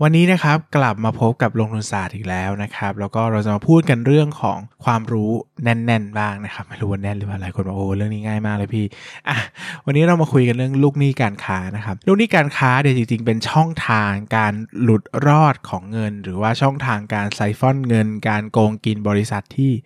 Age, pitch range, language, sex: 20-39, 105-150 Hz, Thai, male